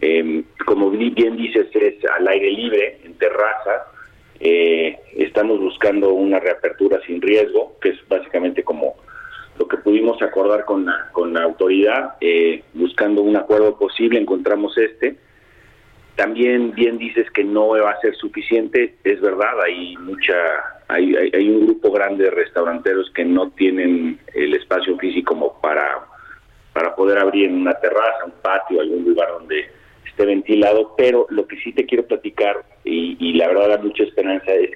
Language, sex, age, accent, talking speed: Spanish, male, 40-59, Mexican, 160 wpm